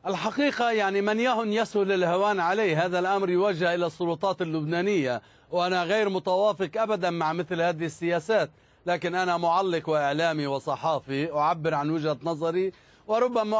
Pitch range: 165-210 Hz